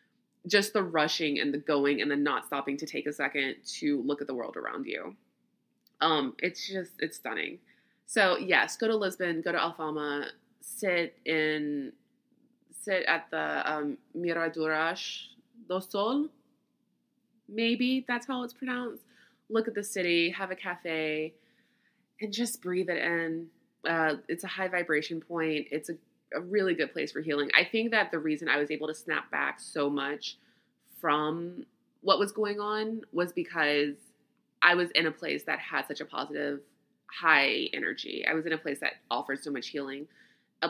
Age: 20-39